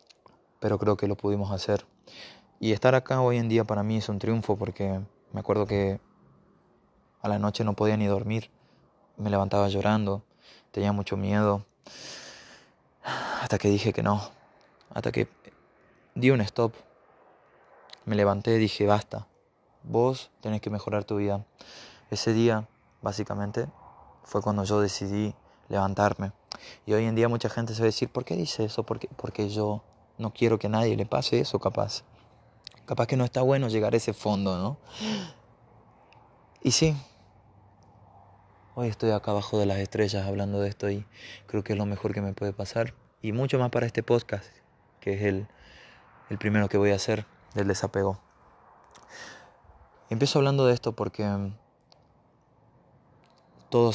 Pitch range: 100-115 Hz